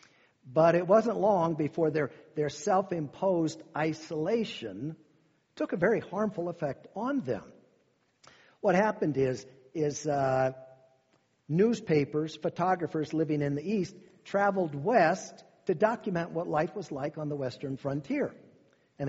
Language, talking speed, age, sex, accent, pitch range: English, 130 wpm, 50-69, male, American, 145-195 Hz